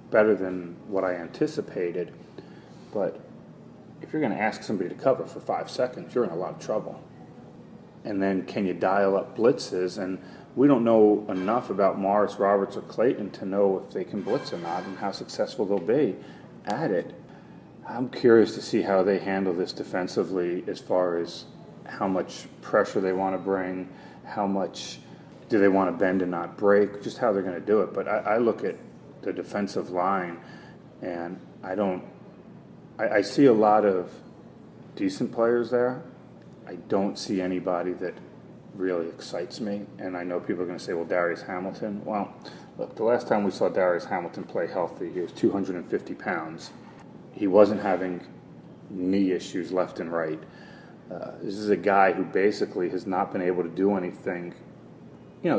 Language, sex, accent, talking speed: English, male, American, 180 wpm